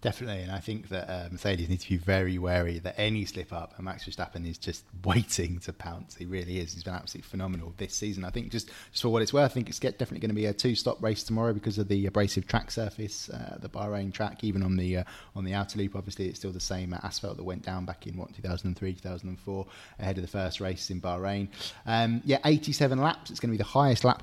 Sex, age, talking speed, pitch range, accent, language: male, 20-39, 250 wpm, 95-110 Hz, British, English